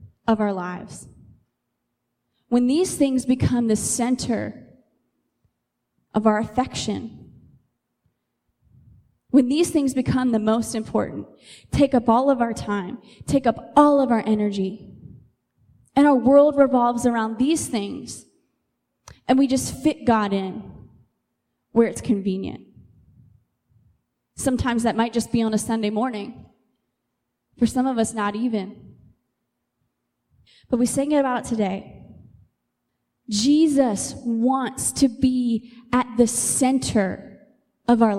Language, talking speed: English, 120 wpm